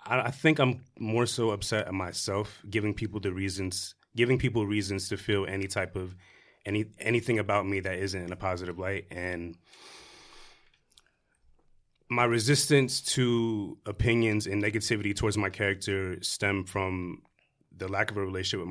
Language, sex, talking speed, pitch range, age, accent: English, male, 155 wpm, 90-105 Hz, 30-49, American